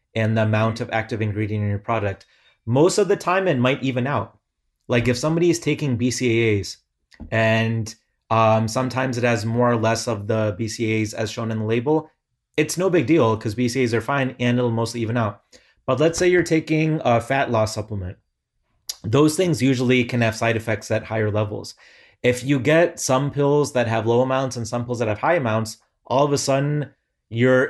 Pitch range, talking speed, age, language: 110-135 Hz, 200 wpm, 30-49, English